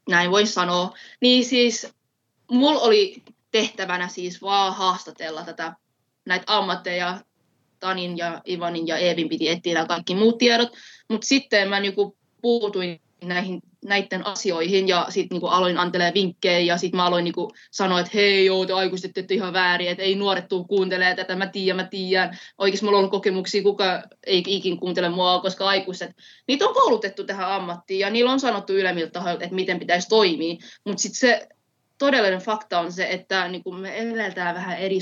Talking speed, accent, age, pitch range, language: 165 wpm, native, 20-39, 175-210 Hz, Finnish